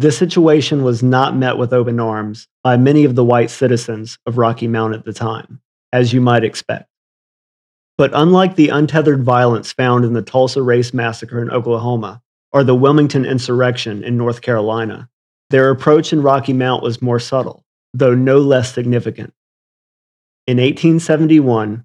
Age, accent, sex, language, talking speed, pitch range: 40-59, American, male, English, 160 wpm, 115-135 Hz